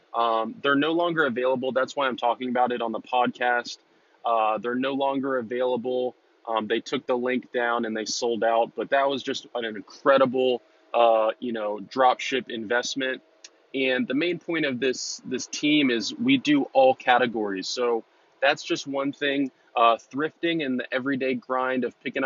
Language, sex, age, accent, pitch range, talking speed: English, male, 20-39, American, 120-135 Hz, 180 wpm